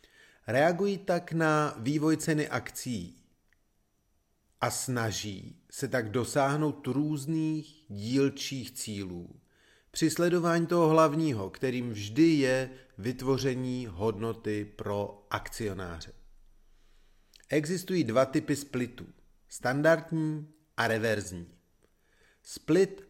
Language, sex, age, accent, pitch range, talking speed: Czech, male, 40-59, native, 105-155 Hz, 85 wpm